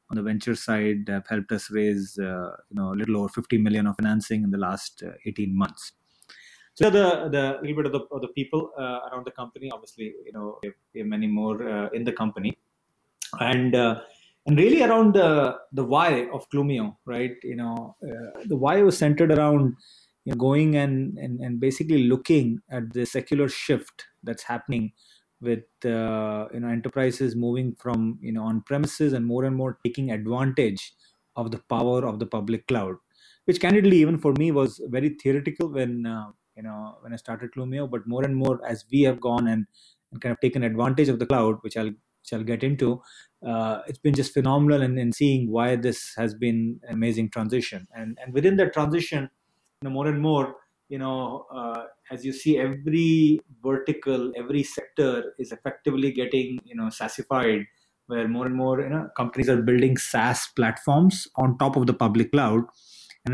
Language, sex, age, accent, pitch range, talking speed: English, male, 30-49, Indian, 115-140 Hz, 195 wpm